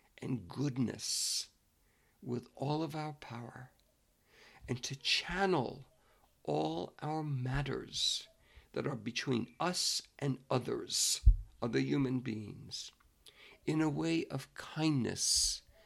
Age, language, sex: 60-79, English, male